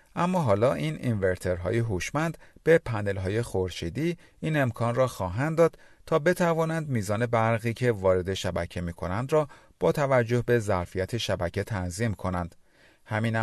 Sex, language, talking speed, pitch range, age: male, Persian, 135 wpm, 95-140 Hz, 40-59